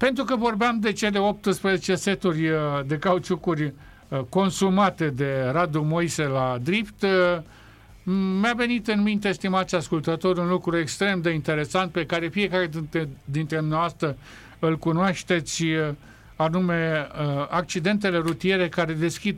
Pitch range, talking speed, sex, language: 150-190 Hz, 120 wpm, male, Romanian